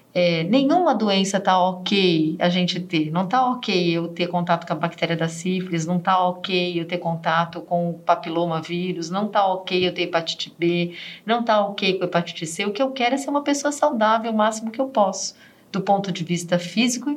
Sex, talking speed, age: female, 215 wpm, 40-59